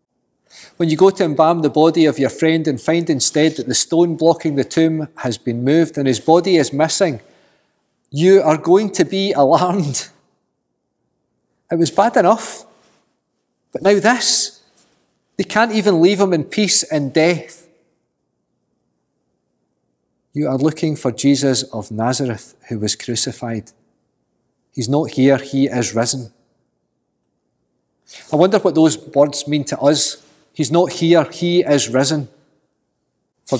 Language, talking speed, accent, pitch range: English, 145 wpm, British, 135-170 Hz